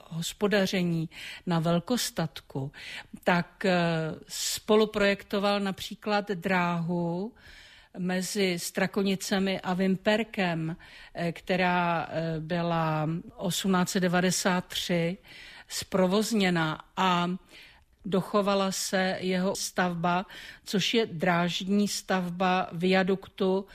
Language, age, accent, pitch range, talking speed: Czech, 50-69, native, 175-200 Hz, 65 wpm